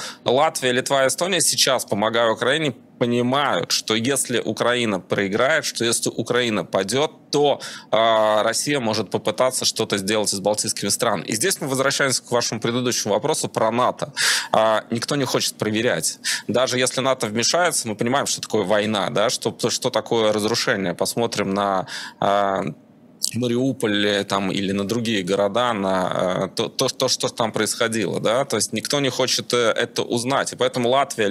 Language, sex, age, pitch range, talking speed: Russian, male, 20-39, 105-130 Hz, 155 wpm